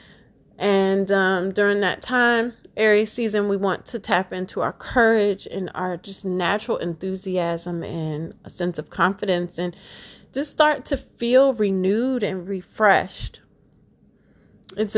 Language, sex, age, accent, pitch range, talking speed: English, female, 30-49, American, 180-225 Hz, 130 wpm